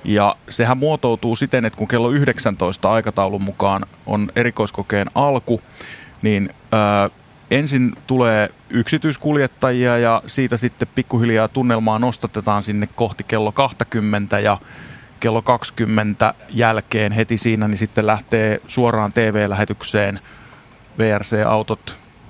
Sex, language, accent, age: male, Finnish, native, 30-49